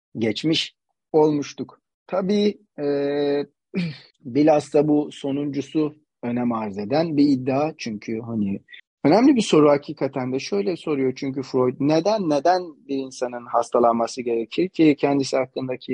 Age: 40-59